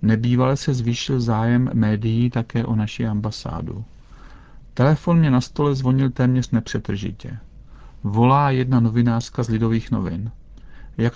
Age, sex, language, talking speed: 50-69, male, Czech, 125 wpm